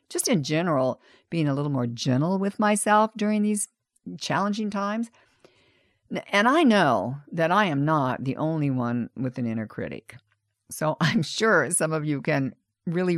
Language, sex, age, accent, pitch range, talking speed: English, female, 50-69, American, 135-200 Hz, 165 wpm